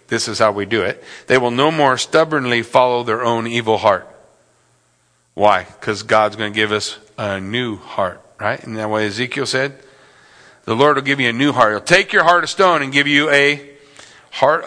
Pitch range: 105-140 Hz